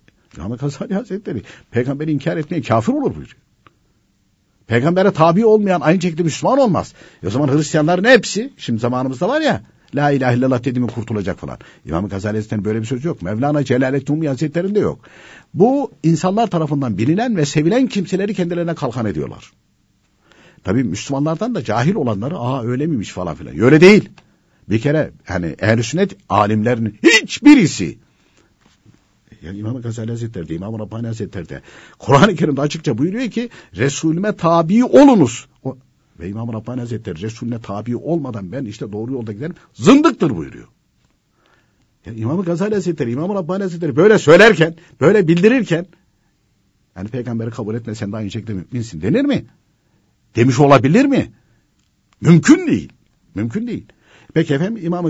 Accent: native